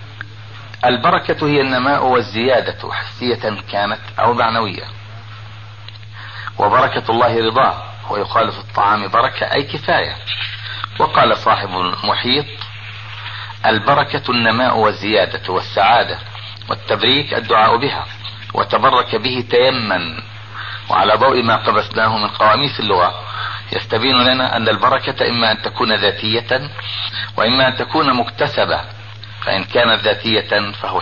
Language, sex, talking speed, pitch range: Arabic, male, 100 wpm, 105-115 Hz